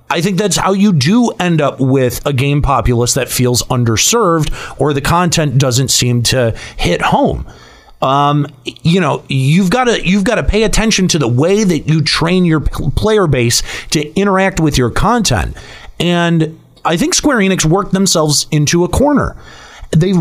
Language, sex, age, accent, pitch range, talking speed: English, male, 30-49, American, 130-190 Hz, 175 wpm